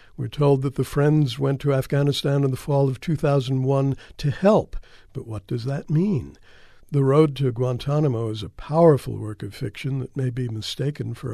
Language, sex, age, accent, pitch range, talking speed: English, male, 60-79, American, 120-155 Hz, 185 wpm